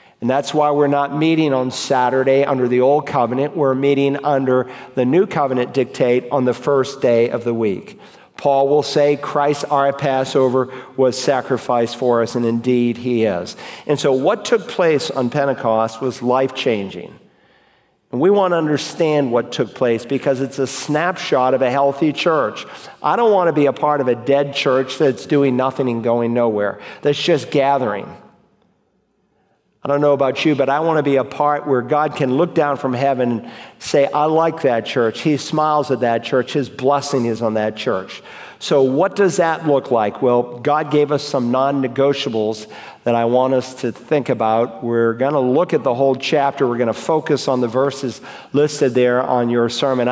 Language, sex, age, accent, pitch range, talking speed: English, male, 50-69, American, 125-145 Hz, 190 wpm